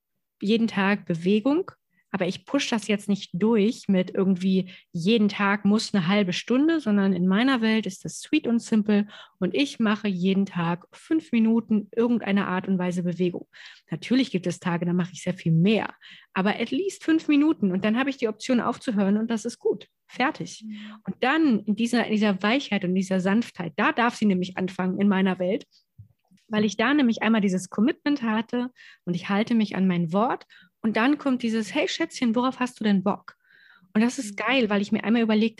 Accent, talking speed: German, 200 wpm